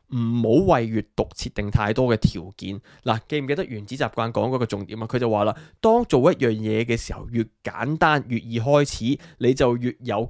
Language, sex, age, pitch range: Chinese, male, 20-39, 110-135 Hz